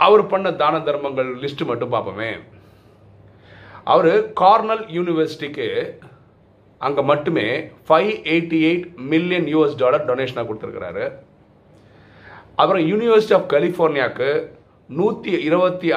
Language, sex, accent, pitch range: Tamil, male, native, 120-185 Hz